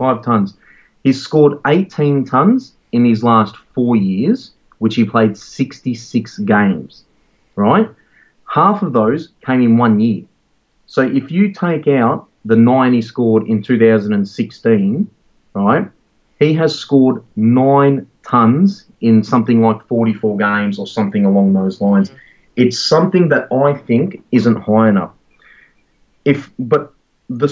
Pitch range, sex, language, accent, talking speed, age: 110-150 Hz, male, English, Australian, 135 wpm, 30-49